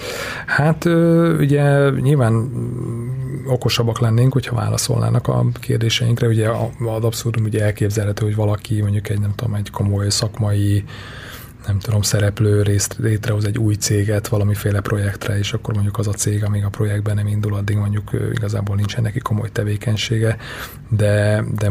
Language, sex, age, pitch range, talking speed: Hungarian, male, 30-49, 105-120 Hz, 145 wpm